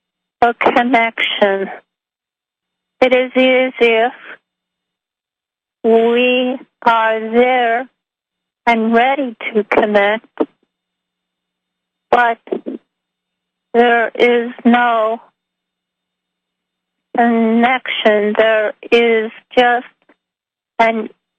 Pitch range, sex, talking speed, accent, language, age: 205-245 Hz, female, 60 wpm, American, English, 40-59